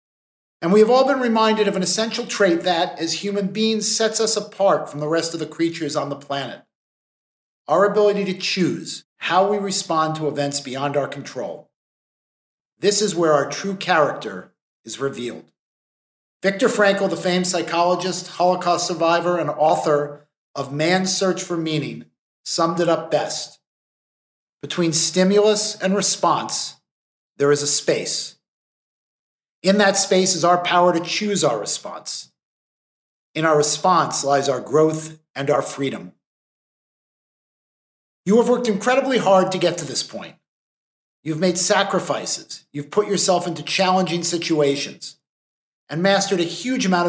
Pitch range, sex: 155-195 Hz, male